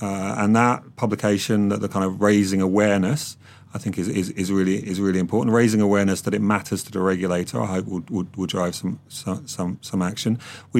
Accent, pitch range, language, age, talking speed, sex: British, 90-105 Hz, English, 30-49, 210 wpm, male